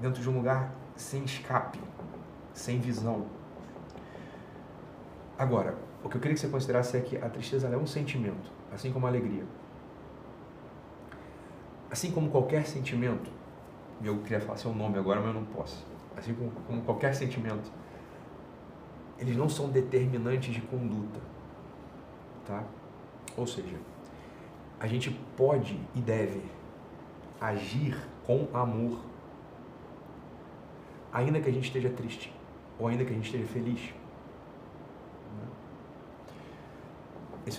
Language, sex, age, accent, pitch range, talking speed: Portuguese, male, 40-59, Brazilian, 105-130 Hz, 120 wpm